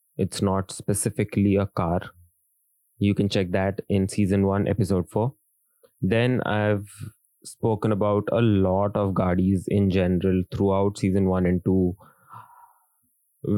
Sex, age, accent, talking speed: male, 20-39, native, 130 wpm